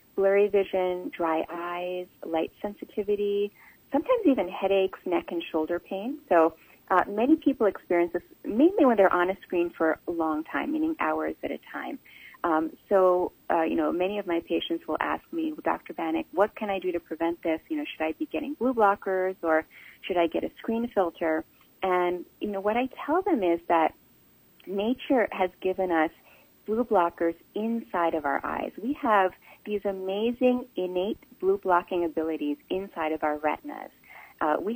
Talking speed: 180 wpm